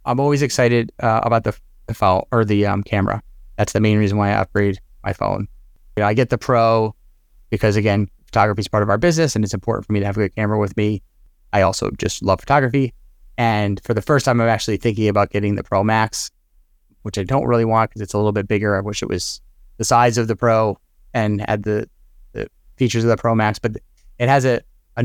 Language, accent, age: English, American, 30-49